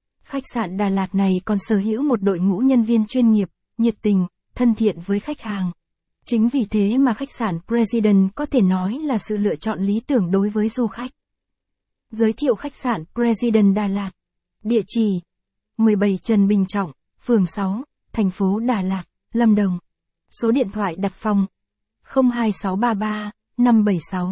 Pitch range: 200-240 Hz